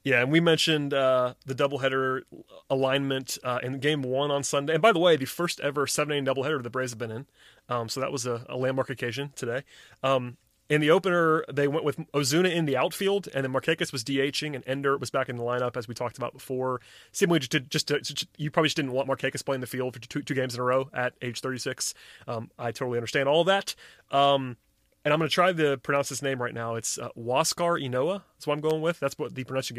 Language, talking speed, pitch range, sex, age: English, 245 wpm, 125-150 Hz, male, 30-49